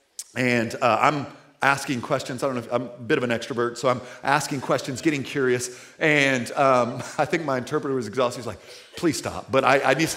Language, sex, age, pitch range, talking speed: English, male, 40-59, 125-175 Hz, 220 wpm